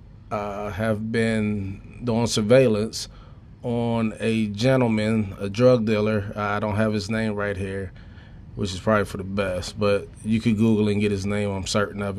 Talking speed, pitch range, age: 175 wpm, 105-120 Hz, 20-39